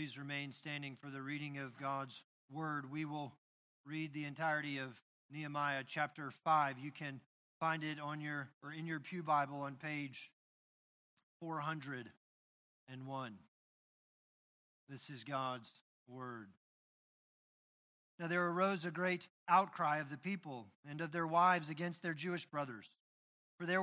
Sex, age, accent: male, 40-59, American